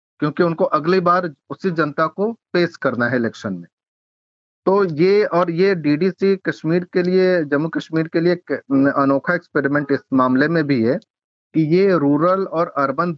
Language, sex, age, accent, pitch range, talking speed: Hindi, male, 40-59, native, 140-175 Hz, 165 wpm